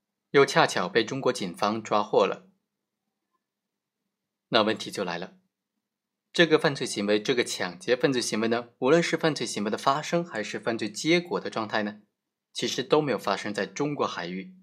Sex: male